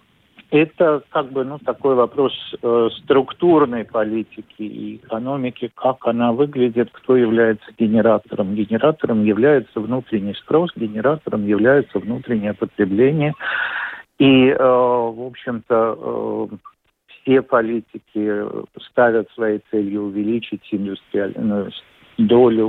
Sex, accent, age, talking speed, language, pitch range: male, native, 50-69, 100 wpm, Russian, 105-125 Hz